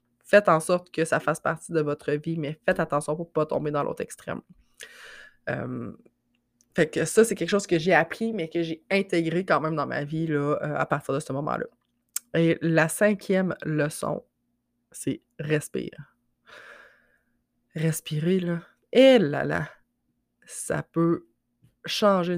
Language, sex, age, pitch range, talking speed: French, female, 20-39, 145-175 Hz, 160 wpm